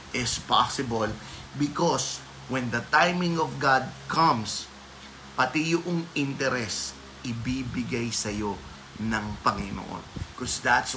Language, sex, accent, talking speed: Filipino, male, native, 100 wpm